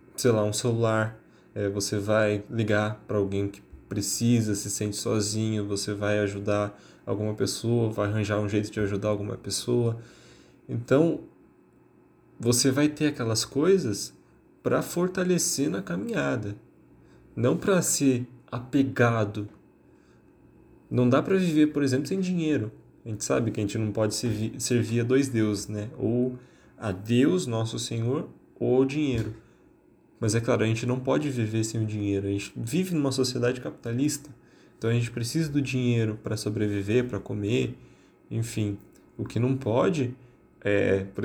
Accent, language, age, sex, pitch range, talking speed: Brazilian, Portuguese, 20-39, male, 105-125 Hz, 150 wpm